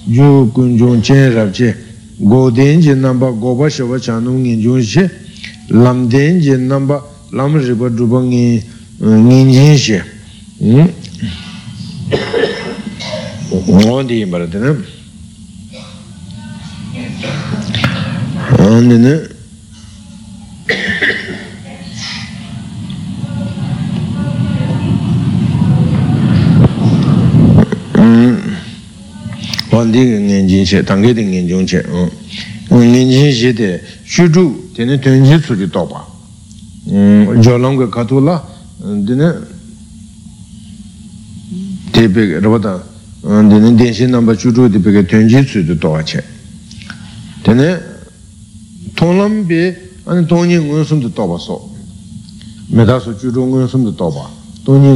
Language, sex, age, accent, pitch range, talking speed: Italian, male, 60-79, American, 110-135 Hz, 75 wpm